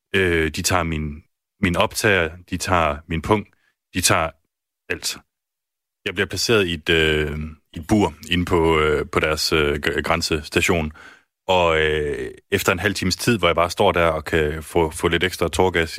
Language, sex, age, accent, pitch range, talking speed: Danish, male, 30-49, native, 80-95 Hz, 175 wpm